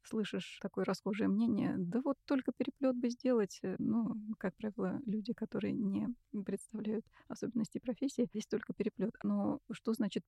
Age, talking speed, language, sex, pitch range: 30-49, 145 wpm, Russian, female, 210-240 Hz